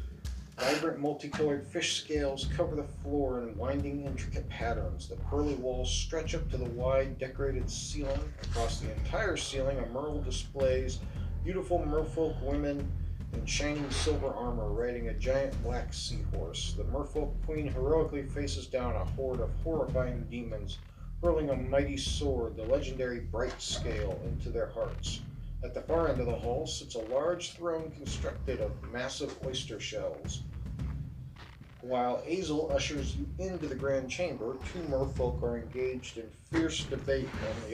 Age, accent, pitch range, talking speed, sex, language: 40-59, American, 85-145 Hz, 150 wpm, male, English